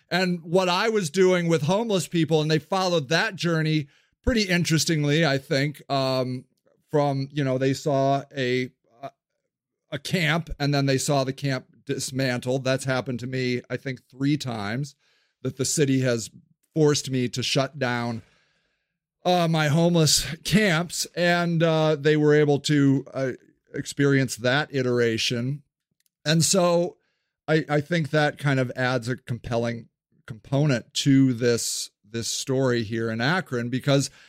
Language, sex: English, male